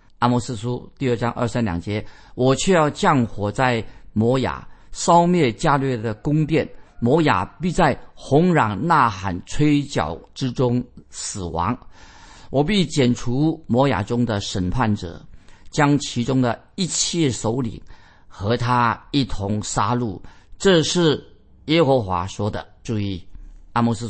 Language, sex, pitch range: Chinese, male, 105-140 Hz